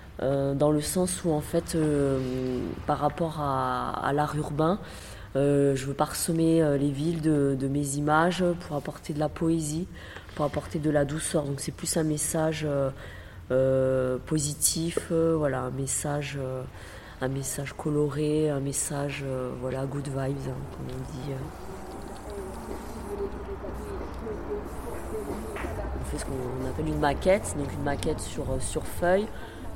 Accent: French